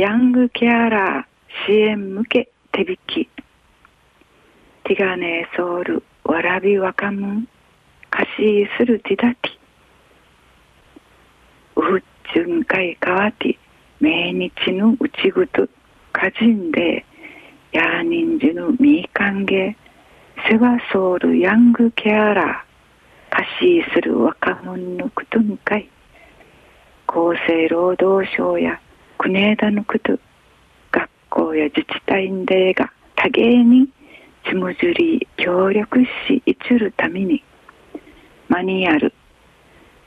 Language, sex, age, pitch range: Japanese, female, 40-59, 190-265 Hz